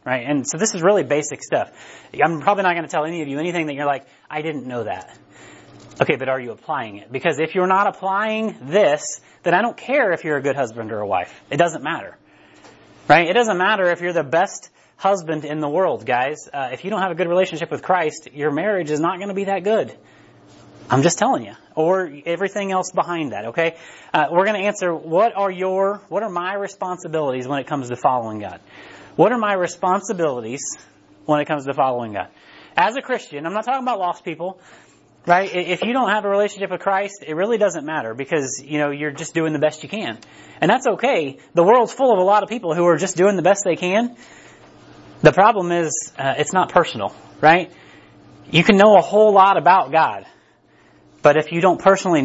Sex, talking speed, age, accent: male, 225 wpm, 30-49, American